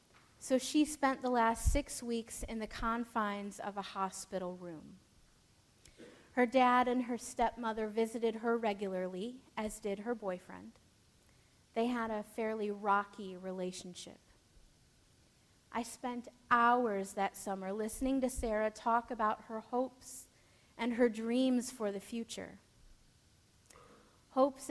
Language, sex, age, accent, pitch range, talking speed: English, female, 30-49, American, 200-245 Hz, 125 wpm